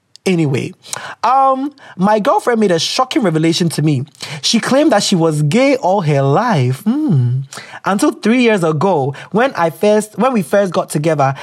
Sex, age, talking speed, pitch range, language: male, 20-39, 170 wpm, 170-235 Hz, English